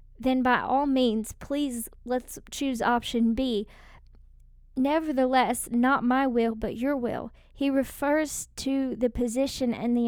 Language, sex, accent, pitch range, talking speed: English, female, American, 235-275 Hz, 135 wpm